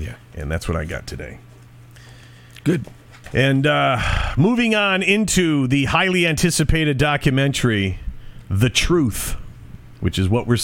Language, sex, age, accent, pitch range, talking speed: English, male, 40-59, American, 110-135 Hz, 130 wpm